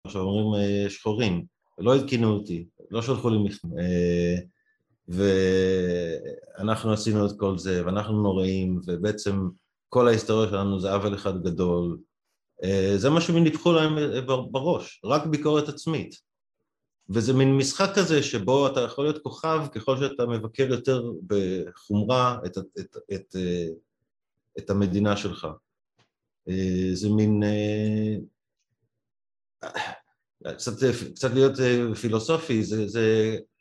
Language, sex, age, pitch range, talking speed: Hebrew, male, 30-49, 95-130 Hz, 110 wpm